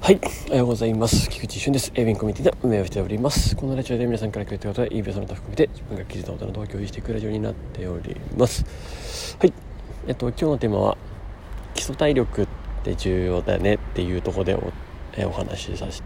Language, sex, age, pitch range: Japanese, male, 40-59, 90-115 Hz